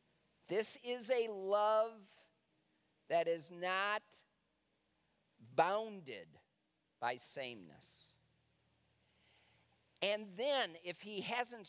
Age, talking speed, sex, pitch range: 50-69, 75 wpm, male, 165-220 Hz